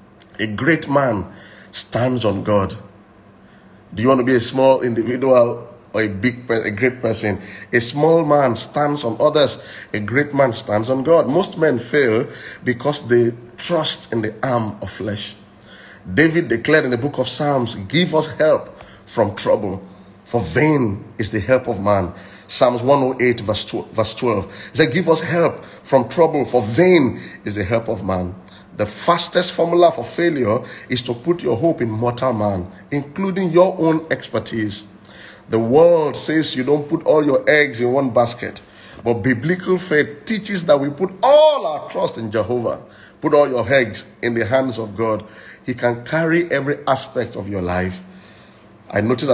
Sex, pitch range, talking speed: male, 110-150 Hz, 170 wpm